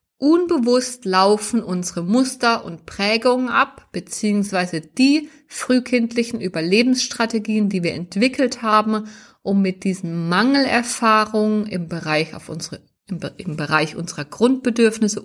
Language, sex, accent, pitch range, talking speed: German, female, German, 180-235 Hz, 110 wpm